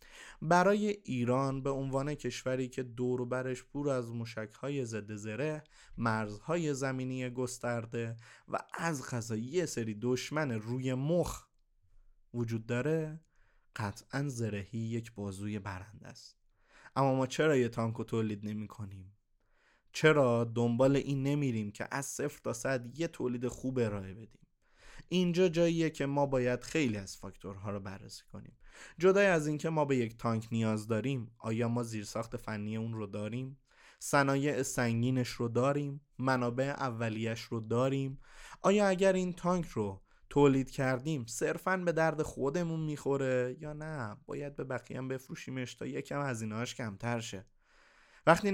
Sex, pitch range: male, 115-140 Hz